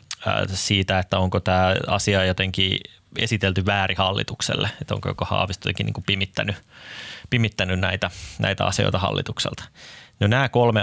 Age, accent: 20-39, native